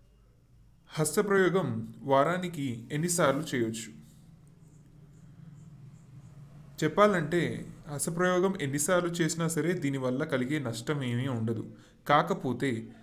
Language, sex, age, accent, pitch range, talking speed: Telugu, male, 20-39, native, 125-165 Hz, 70 wpm